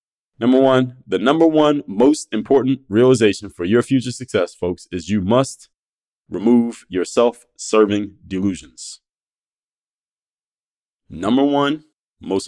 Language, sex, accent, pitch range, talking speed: English, male, American, 100-125 Hz, 110 wpm